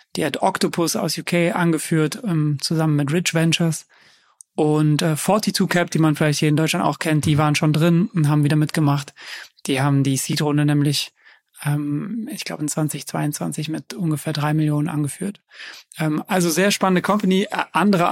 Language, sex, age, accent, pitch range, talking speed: German, male, 30-49, German, 155-180 Hz, 175 wpm